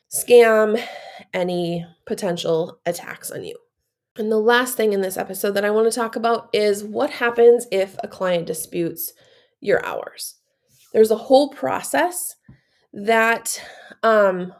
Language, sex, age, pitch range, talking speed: English, female, 20-39, 185-240 Hz, 140 wpm